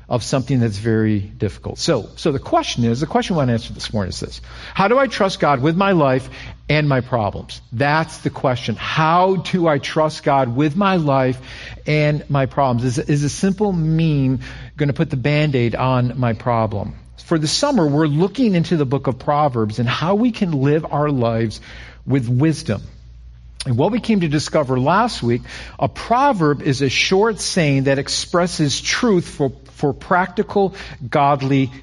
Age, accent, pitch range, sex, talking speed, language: 50-69, American, 130-175 Hz, male, 185 wpm, English